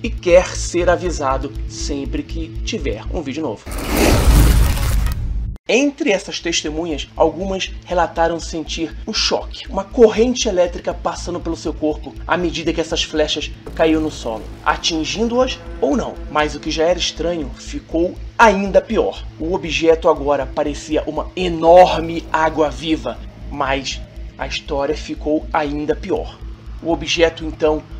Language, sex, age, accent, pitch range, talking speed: Portuguese, male, 30-49, Brazilian, 150-190 Hz, 130 wpm